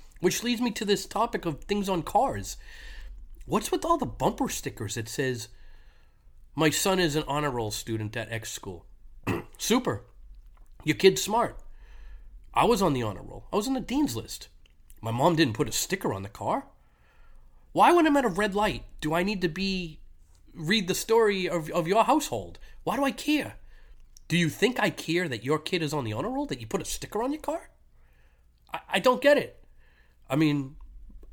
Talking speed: 200 wpm